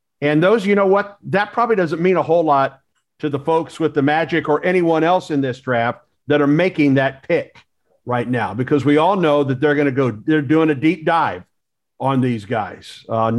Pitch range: 135-175 Hz